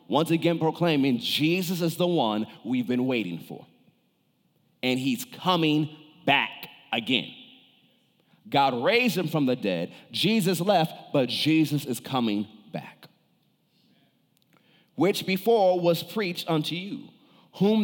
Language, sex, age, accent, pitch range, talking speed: English, male, 40-59, American, 155-200 Hz, 120 wpm